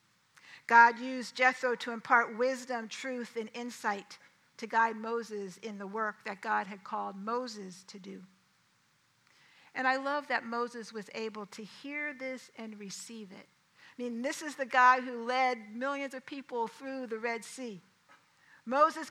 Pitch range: 210-260 Hz